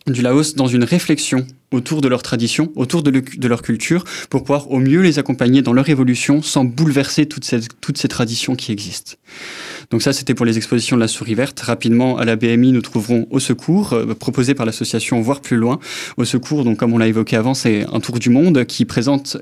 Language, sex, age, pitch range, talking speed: French, male, 20-39, 115-140 Hz, 225 wpm